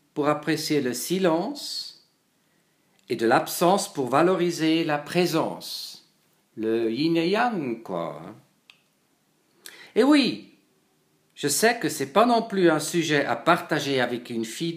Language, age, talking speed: English, 50-69, 135 wpm